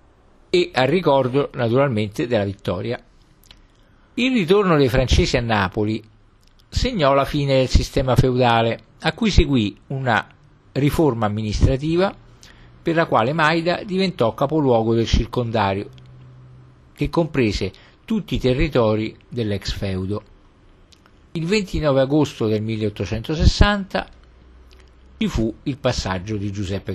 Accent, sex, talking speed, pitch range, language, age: native, male, 110 wpm, 100-140 Hz, Italian, 50-69